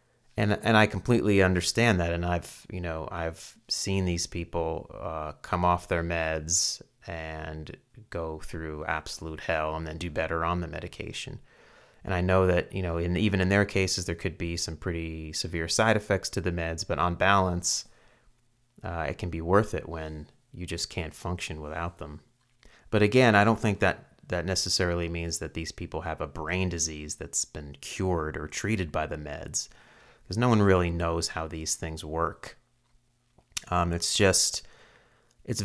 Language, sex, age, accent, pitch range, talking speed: English, male, 30-49, American, 80-95 Hz, 175 wpm